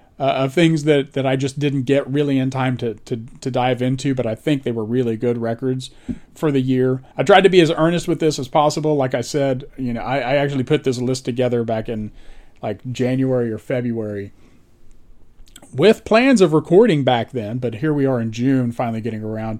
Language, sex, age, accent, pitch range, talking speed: English, male, 40-59, American, 115-150 Hz, 215 wpm